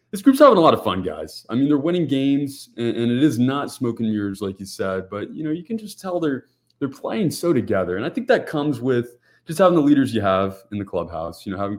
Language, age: English, 20-39